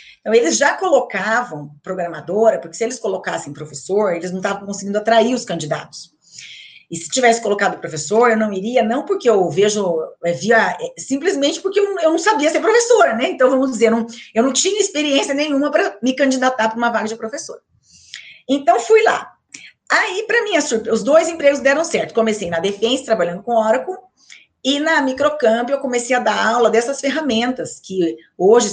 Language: Portuguese